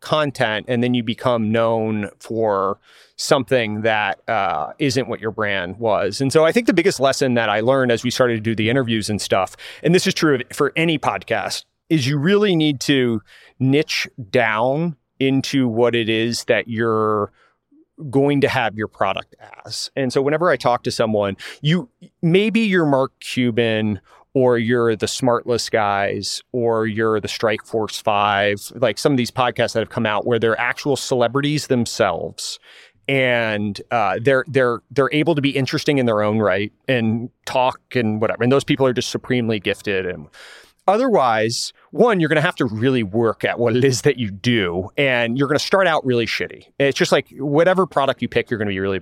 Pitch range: 110-145 Hz